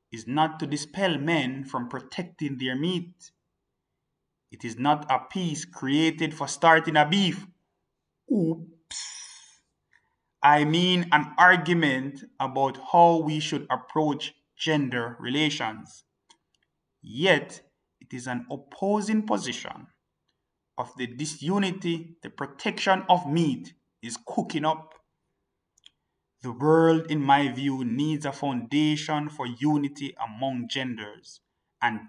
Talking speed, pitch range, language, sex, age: 110 wpm, 125-165 Hz, English, male, 30-49